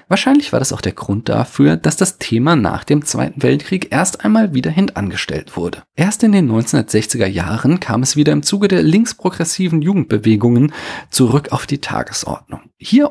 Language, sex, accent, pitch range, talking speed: German, male, German, 115-170 Hz, 165 wpm